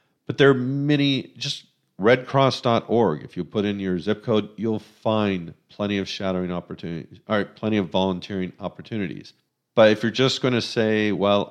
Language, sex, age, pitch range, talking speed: English, male, 50-69, 95-115 Hz, 170 wpm